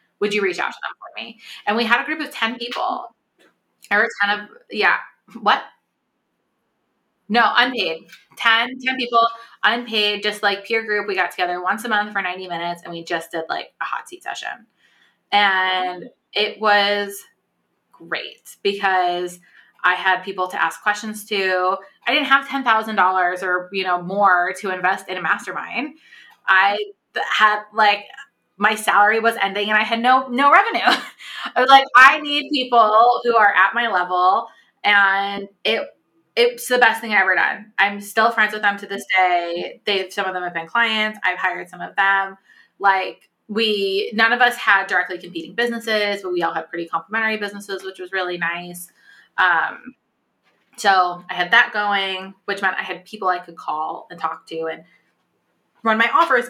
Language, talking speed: English, 180 wpm